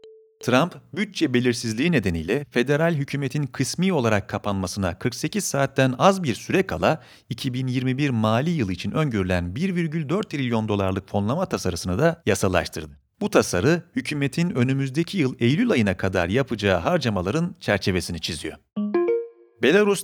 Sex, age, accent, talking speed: male, 40-59, native, 120 wpm